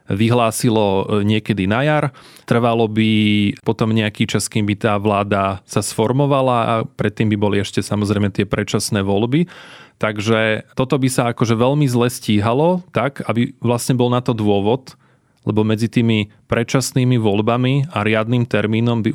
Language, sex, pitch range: Slovak, male, 105-135 Hz